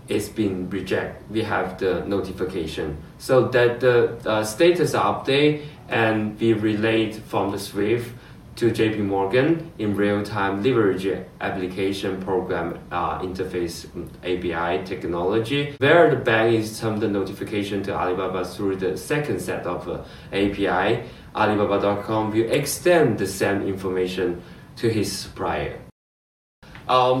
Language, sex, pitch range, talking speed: English, male, 95-120 Hz, 125 wpm